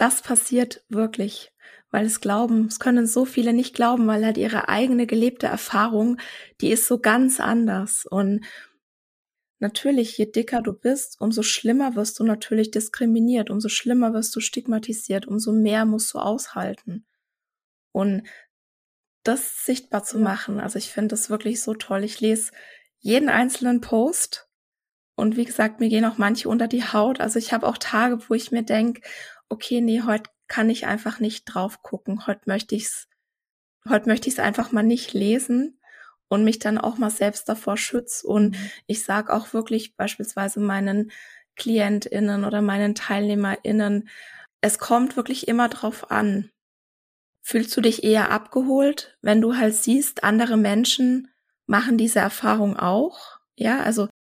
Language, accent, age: German, German, 20-39